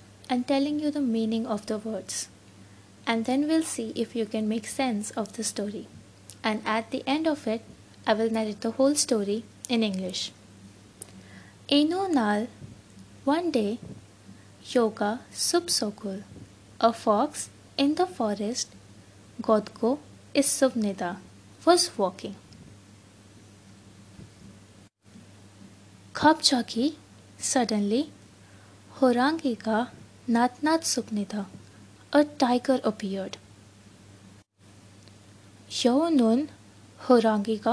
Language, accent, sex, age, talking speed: English, Indian, female, 20-39, 100 wpm